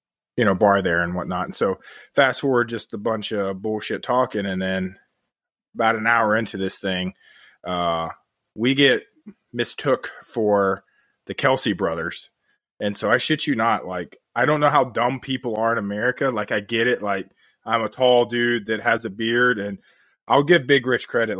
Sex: male